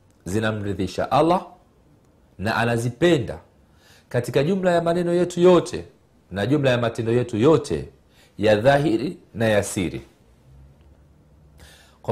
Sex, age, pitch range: male, 40-59, 90-135 Hz